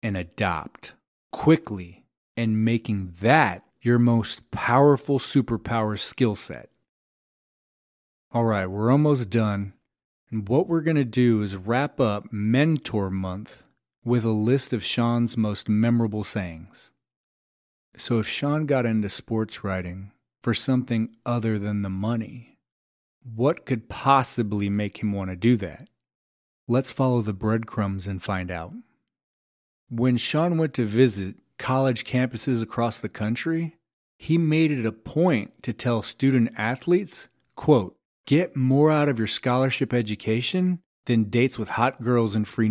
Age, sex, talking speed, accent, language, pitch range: 40-59, male, 135 wpm, American, English, 105-130 Hz